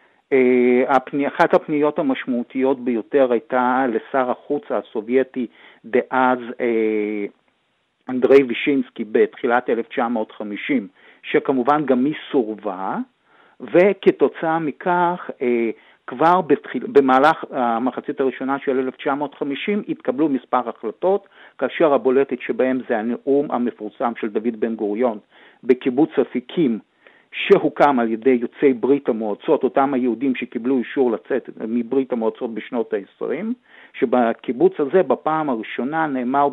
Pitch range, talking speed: 120-155 Hz, 100 wpm